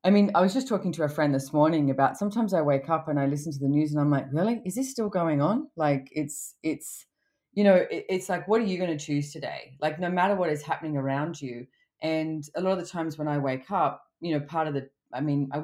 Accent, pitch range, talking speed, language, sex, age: Australian, 145-180 Hz, 275 wpm, English, female, 30-49